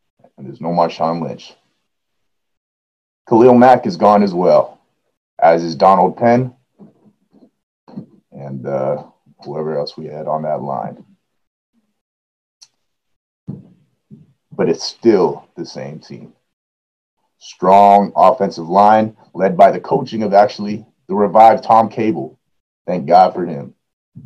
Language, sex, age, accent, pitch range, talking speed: English, male, 30-49, American, 70-115 Hz, 115 wpm